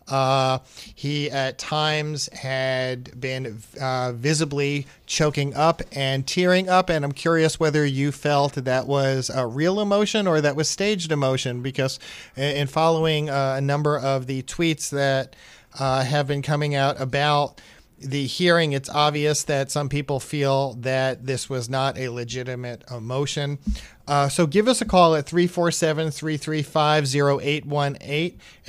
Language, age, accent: English, 40-59, American